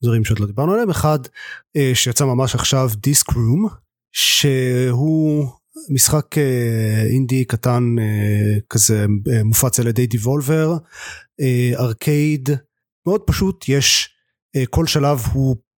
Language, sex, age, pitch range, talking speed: Hebrew, male, 30-49, 115-145 Hz, 105 wpm